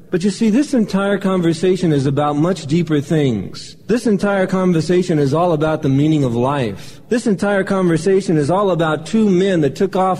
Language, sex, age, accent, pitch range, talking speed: English, male, 40-59, American, 145-185 Hz, 190 wpm